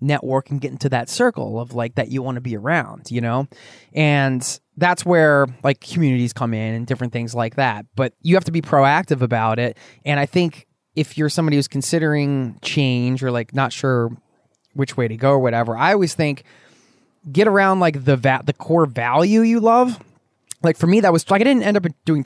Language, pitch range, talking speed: English, 125-160 Hz, 215 wpm